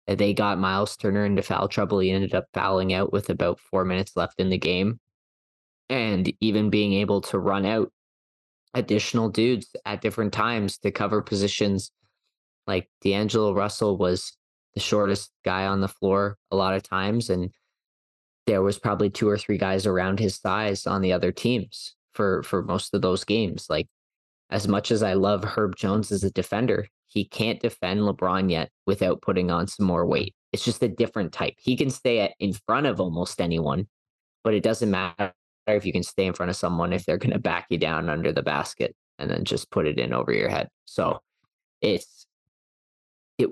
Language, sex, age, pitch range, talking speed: English, male, 20-39, 95-110 Hz, 195 wpm